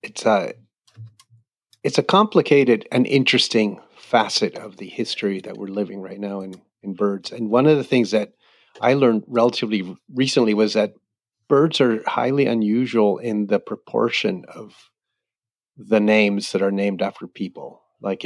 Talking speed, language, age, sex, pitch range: 150 wpm, English, 30-49, male, 100-120 Hz